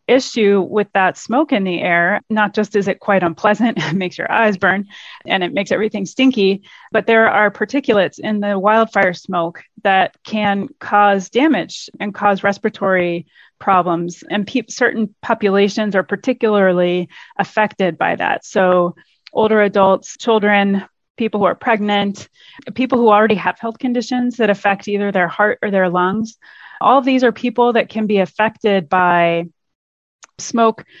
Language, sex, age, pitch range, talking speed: English, female, 30-49, 195-225 Hz, 155 wpm